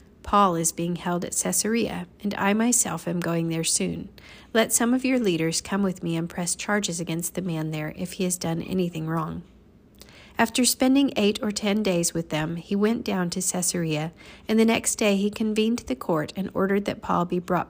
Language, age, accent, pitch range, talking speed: English, 40-59, American, 170-205 Hz, 205 wpm